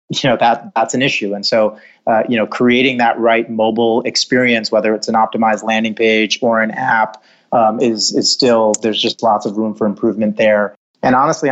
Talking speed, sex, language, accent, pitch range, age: 205 wpm, male, English, American, 105-120 Hz, 30-49